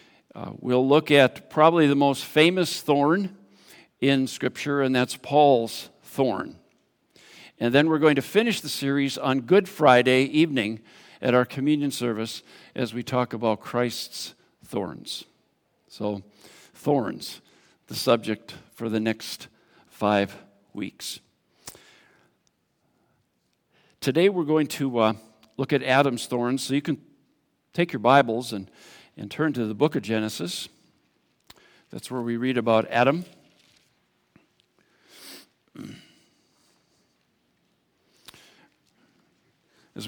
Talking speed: 115 wpm